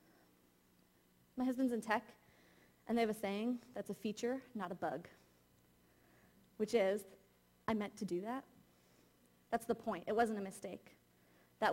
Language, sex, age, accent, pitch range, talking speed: English, female, 30-49, American, 190-245 Hz, 155 wpm